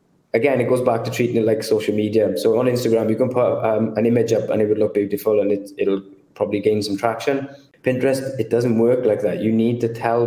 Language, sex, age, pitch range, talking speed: English, male, 20-39, 110-130 Hz, 245 wpm